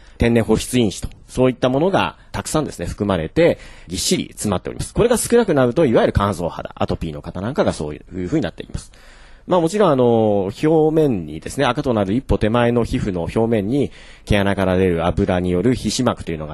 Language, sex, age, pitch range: Japanese, male, 40-59, 90-130 Hz